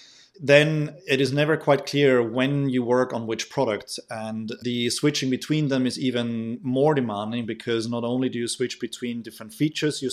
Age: 30-49